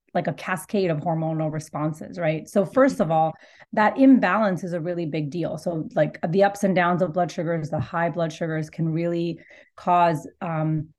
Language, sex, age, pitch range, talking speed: English, female, 30-49, 160-195 Hz, 190 wpm